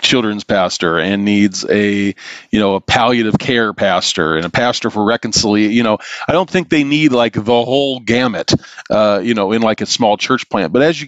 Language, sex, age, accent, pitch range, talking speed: English, male, 40-59, American, 100-125 Hz, 210 wpm